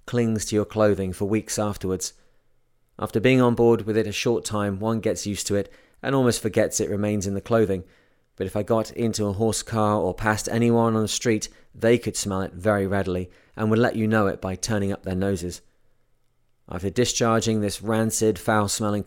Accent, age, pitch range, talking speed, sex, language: British, 30-49, 100-120 Hz, 205 wpm, male, English